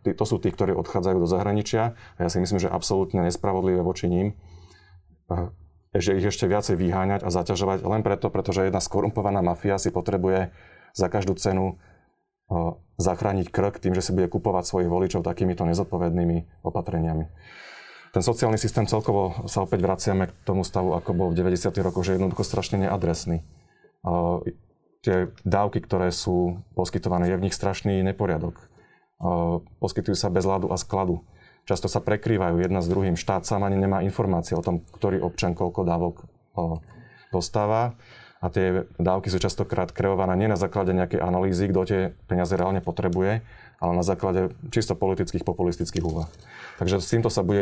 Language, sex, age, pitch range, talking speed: Slovak, male, 30-49, 90-100 Hz, 160 wpm